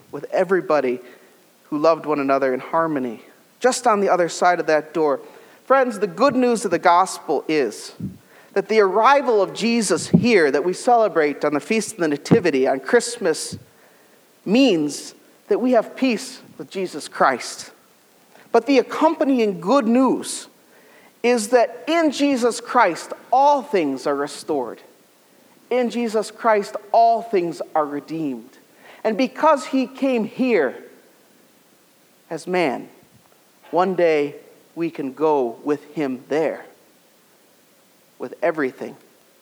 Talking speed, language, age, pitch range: 130 wpm, English, 40-59, 140-235 Hz